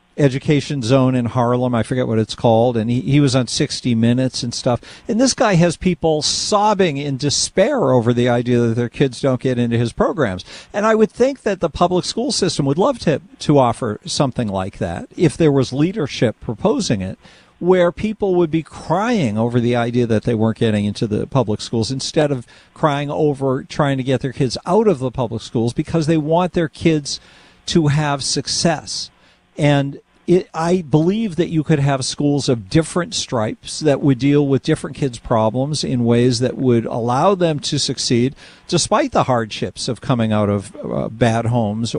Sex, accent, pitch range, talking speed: male, American, 120-160 Hz, 195 wpm